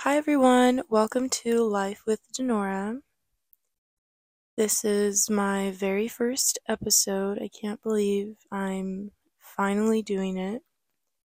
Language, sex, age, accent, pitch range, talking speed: English, female, 20-39, American, 195-220 Hz, 105 wpm